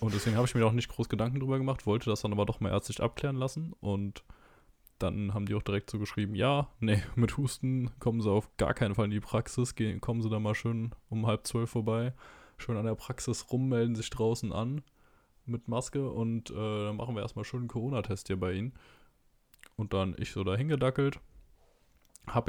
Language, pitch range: German, 105-125 Hz